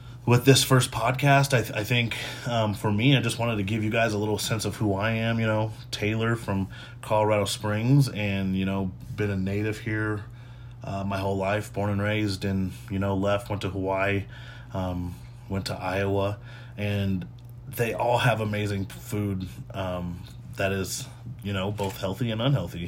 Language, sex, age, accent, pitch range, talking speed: English, male, 30-49, American, 100-120 Hz, 185 wpm